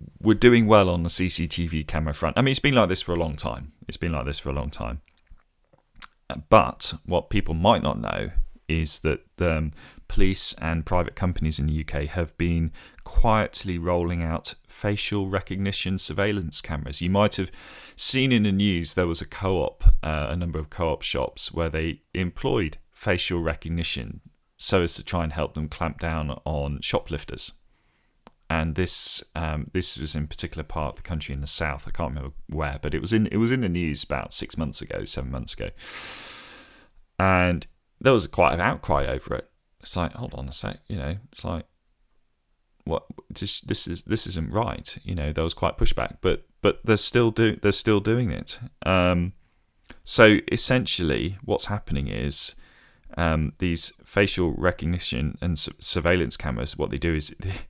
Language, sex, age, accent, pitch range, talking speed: English, male, 40-59, British, 75-95 Hz, 185 wpm